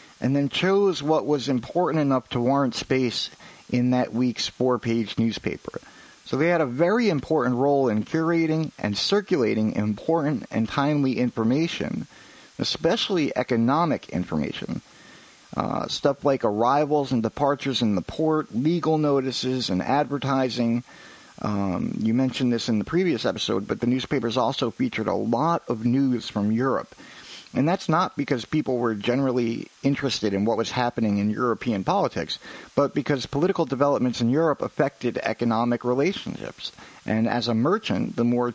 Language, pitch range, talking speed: English, 110-145 Hz, 150 wpm